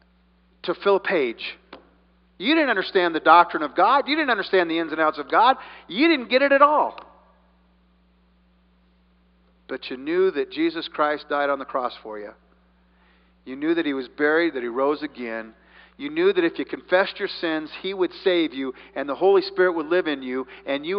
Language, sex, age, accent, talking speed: English, male, 50-69, American, 200 wpm